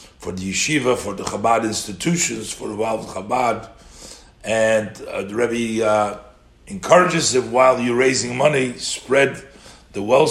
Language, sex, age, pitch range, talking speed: English, male, 50-69, 105-150 Hz, 145 wpm